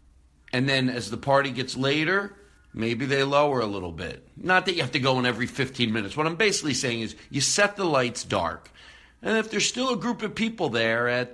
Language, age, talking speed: English, 50-69, 230 wpm